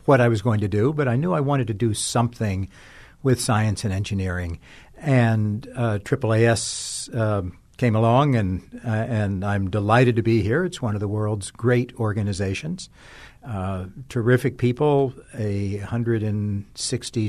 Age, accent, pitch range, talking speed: 60-79, American, 105-140 Hz, 160 wpm